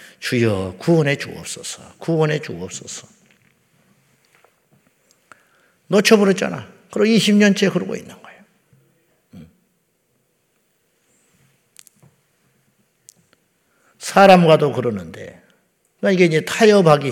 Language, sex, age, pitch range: Korean, male, 50-69, 125-180 Hz